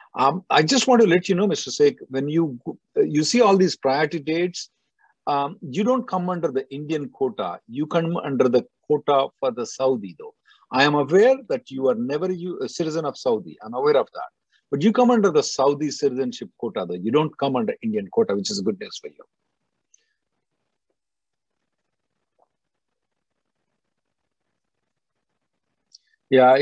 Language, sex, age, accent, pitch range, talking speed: English, male, 50-69, Indian, 130-215 Hz, 165 wpm